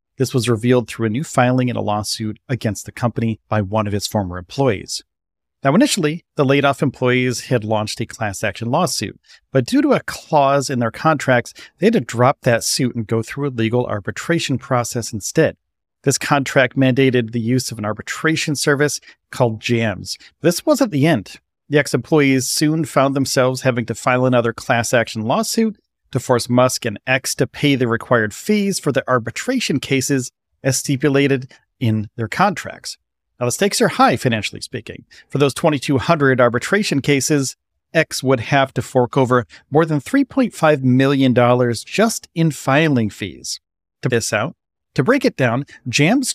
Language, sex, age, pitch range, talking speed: English, male, 40-59, 115-150 Hz, 170 wpm